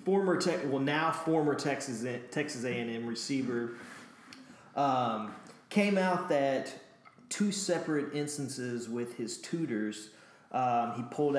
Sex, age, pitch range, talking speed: male, 30-49, 120-155 Hz, 125 wpm